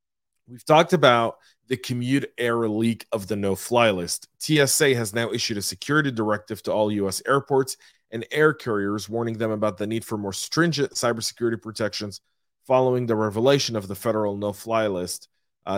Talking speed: 165 wpm